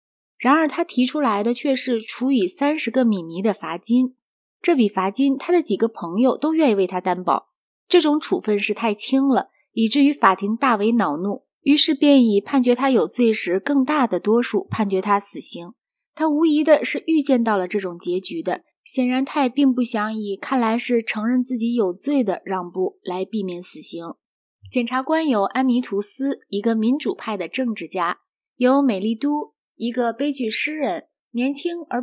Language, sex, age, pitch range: Chinese, female, 30-49, 210-280 Hz